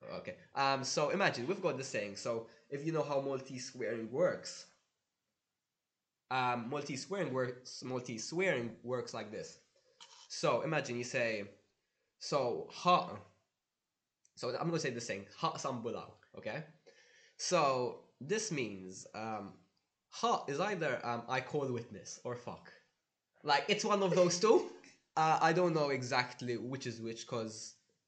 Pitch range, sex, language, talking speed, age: 120-180 Hz, male, English, 145 wpm, 20-39